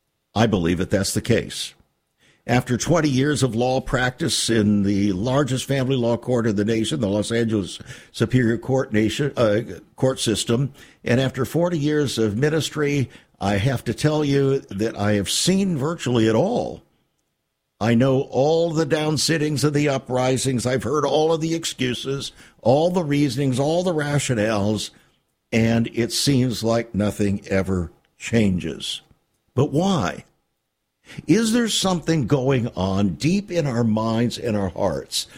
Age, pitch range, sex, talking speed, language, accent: 60-79, 110-145 Hz, male, 150 wpm, English, American